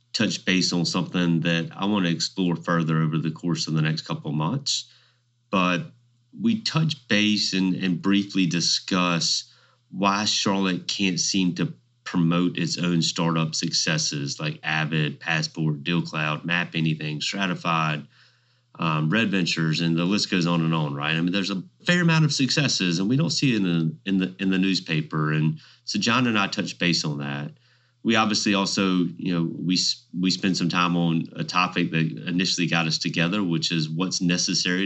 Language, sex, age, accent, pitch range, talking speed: English, male, 30-49, American, 85-105 Hz, 185 wpm